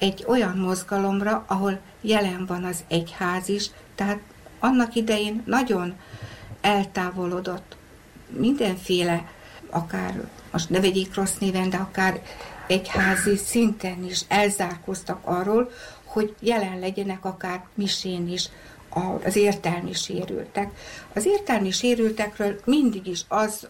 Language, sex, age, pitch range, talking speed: Hungarian, female, 60-79, 185-210 Hz, 105 wpm